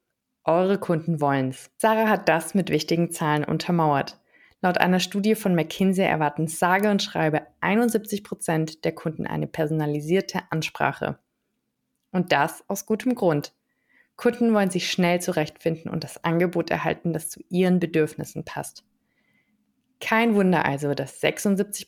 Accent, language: German, German